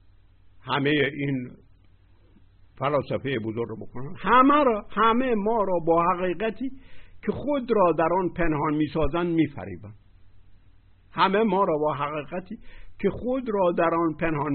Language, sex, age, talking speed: Persian, male, 60-79, 135 wpm